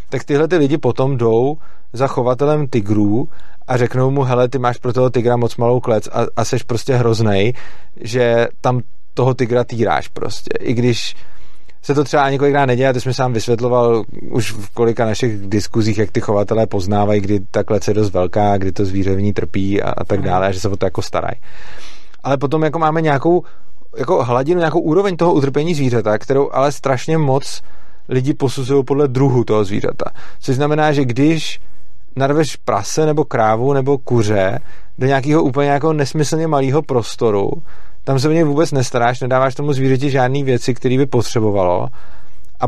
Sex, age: male, 30-49